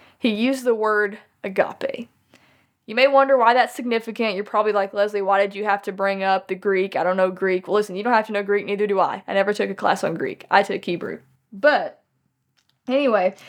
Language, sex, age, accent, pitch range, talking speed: English, female, 20-39, American, 195-240 Hz, 225 wpm